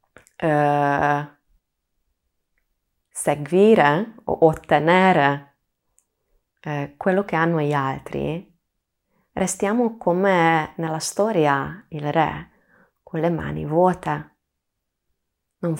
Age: 20-39